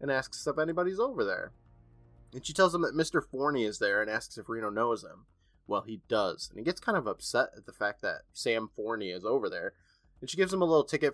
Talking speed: 250 wpm